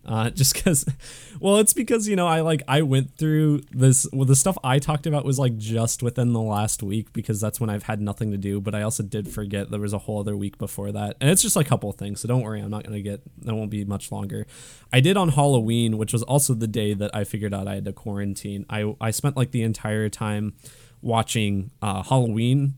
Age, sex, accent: 20-39, male, American